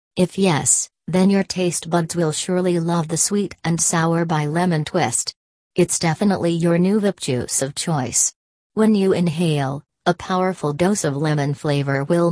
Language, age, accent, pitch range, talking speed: English, 40-59, American, 145-185 Hz, 165 wpm